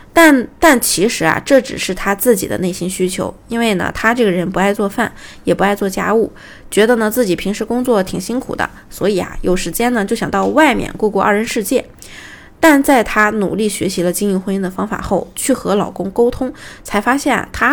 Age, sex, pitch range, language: 20-39, female, 190-245 Hz, Chinese